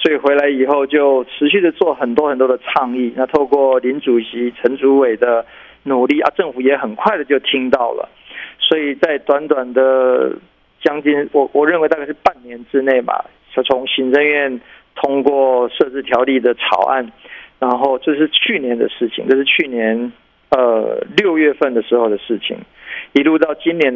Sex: male